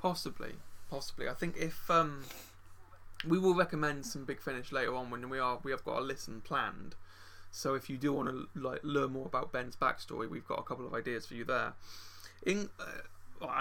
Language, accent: English, British